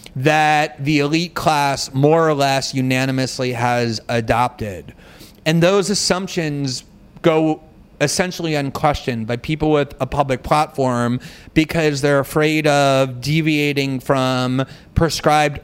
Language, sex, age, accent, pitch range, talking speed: English, male, 30-49, American, 140-175 Hz, 110 wpm